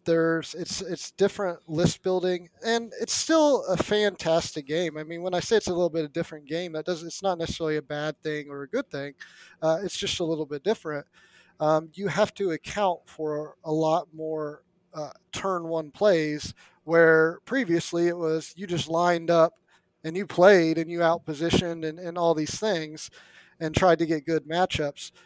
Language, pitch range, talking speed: English, 160-190 Hz, 195 wpm